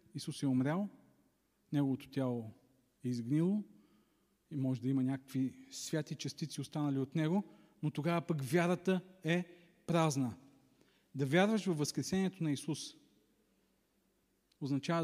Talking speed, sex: 120 wpm, male